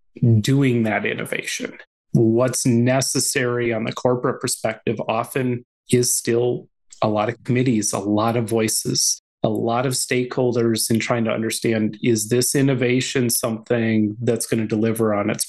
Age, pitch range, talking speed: 30-49, 110-130 Hz, 145 wpm